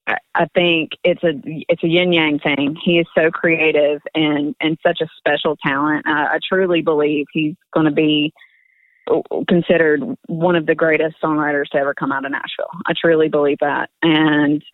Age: 30-49